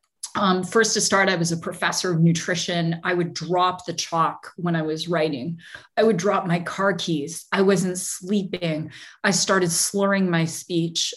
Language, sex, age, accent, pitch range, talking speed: English, female, 30-49, American, 160-185 Hz, 175 wpm